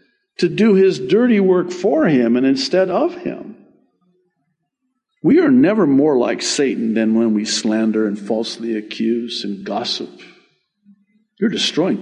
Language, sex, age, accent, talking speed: English, male, 50-69, American, 140 wpm